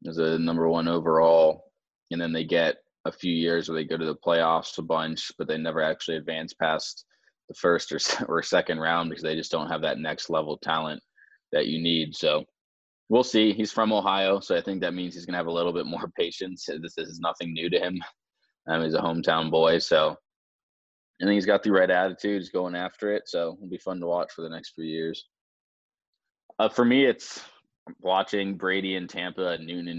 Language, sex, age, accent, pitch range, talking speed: English, male, 20-39, American, 80-90 Hz, 220 wpm